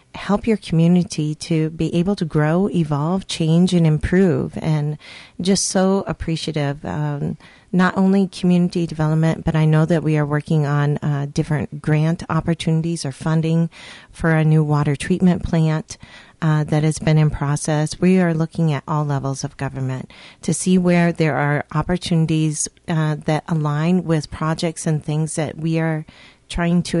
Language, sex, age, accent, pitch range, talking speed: English, female, 40-59, American, 155-175 Hz, 160 wpm